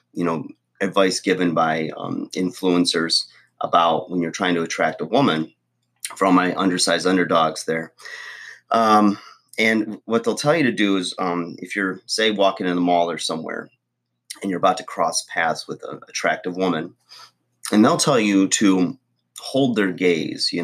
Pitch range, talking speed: 85-100 Hz, 170 wpm